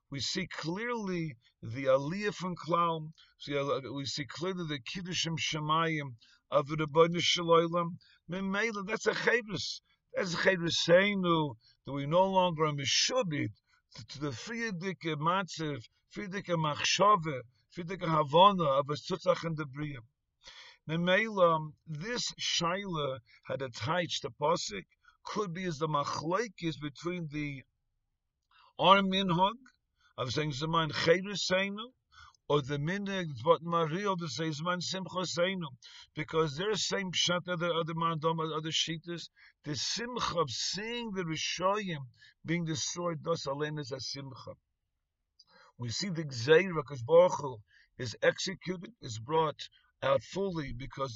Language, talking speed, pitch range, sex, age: English, 130 wpm, 145-185 Hz, male, 50-69